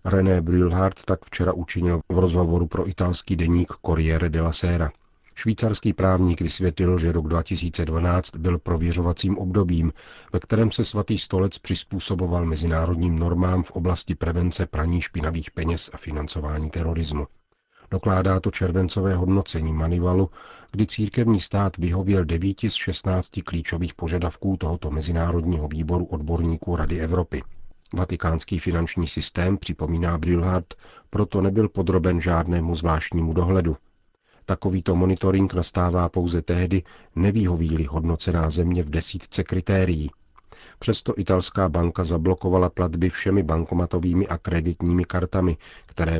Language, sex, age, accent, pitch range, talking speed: Czech, male, 40-59, native, 85-95 Hz, 120 wpm